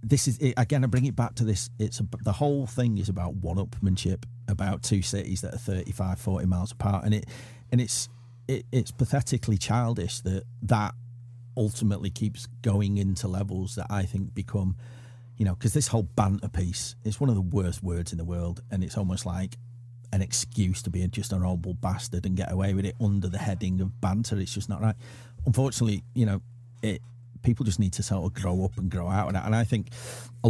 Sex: male